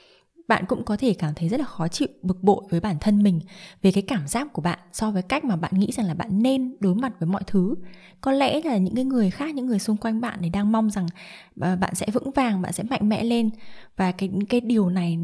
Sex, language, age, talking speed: female, Vietnamese, 20-39, 260 wpm